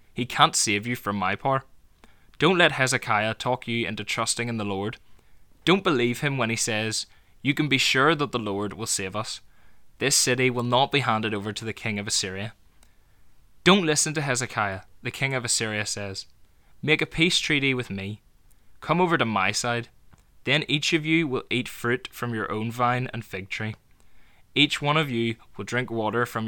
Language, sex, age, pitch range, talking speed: English, male, 10-29, 105-130 Hz, 195 wpm